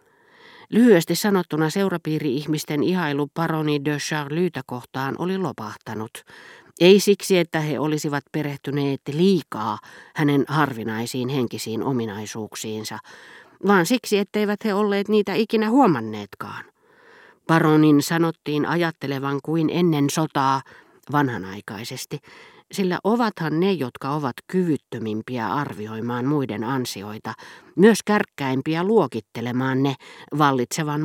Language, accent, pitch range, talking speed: Finnish, native, 125-180 Hz, 95 wpm